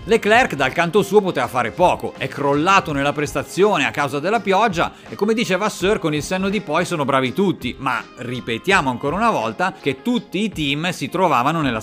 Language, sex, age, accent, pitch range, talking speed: Italian, male, 40-59, native, 135-185 Hz, 200 wpm